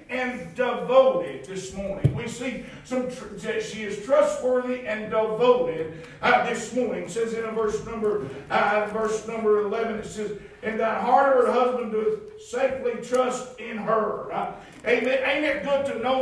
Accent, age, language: American, 50-69, English